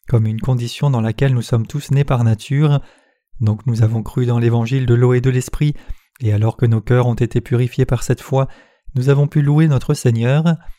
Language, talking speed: French, 215 wpm